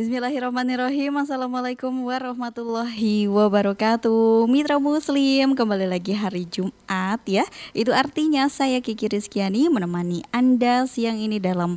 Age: 20-39